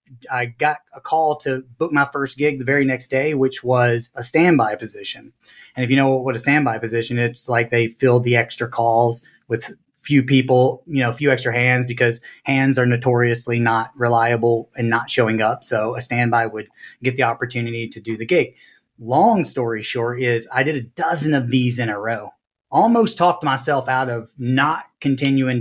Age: 30-49